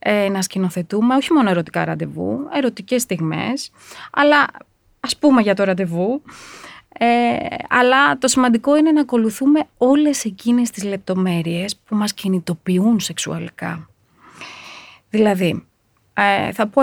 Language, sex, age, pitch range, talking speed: Greek, female, 30-49, 180-250 Hz, 120 wpm